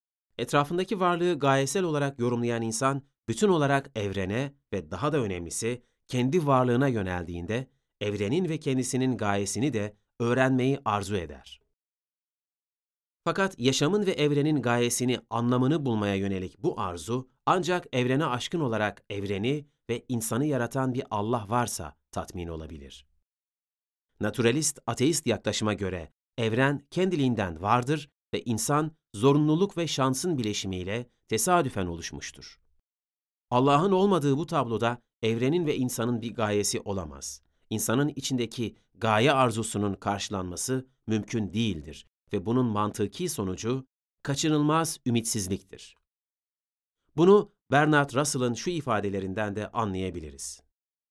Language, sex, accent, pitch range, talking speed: Turkish, male, native, 100-140 Hz, 110 wpm